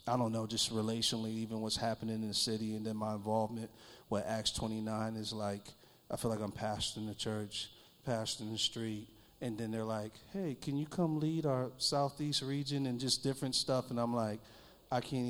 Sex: male